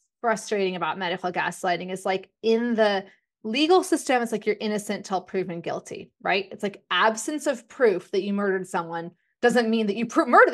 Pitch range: 195-245 Hz